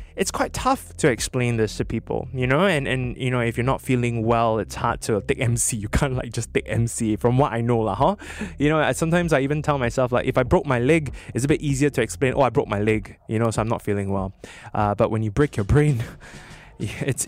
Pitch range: 110-140 Hz